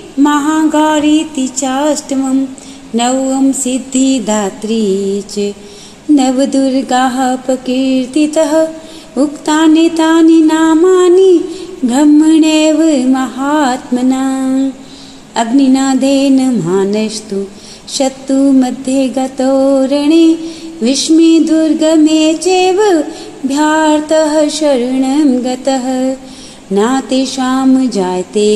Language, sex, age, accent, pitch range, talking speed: Hindi, female, 30-49, native, 255-310 Hz, 40 wpm